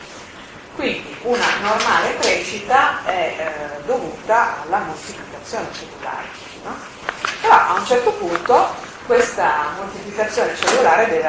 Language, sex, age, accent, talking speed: Italian, female, 40-59, native, 105 wpm